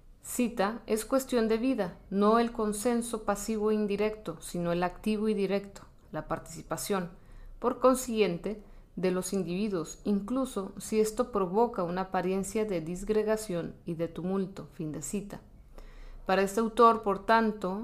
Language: Spanish